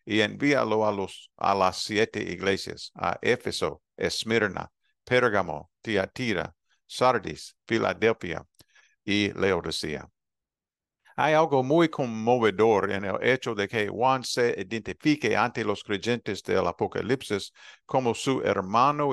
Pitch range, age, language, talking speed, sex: 100-130 Hz, 50-69, Spanish, 115 wpm, male